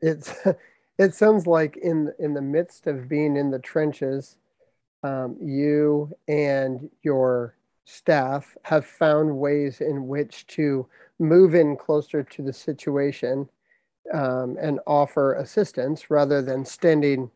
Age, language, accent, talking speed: 40-59, English, American, 125 wpm